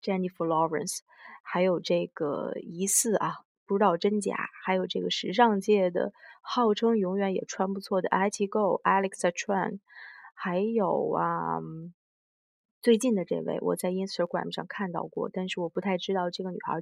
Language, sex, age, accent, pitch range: Chinese, female, 20-39, native, 180-210 Hz